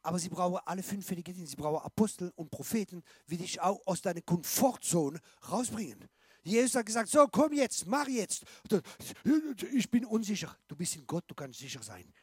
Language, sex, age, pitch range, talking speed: German, male, 50-69, 170-230 Hz, 180 wpm